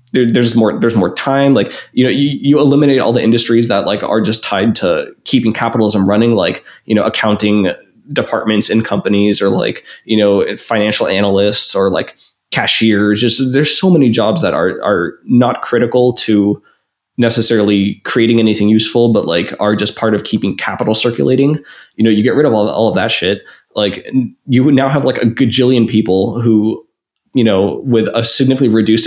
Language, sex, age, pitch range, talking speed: English, male, 20-39, 105-125 Hz, 190 wpm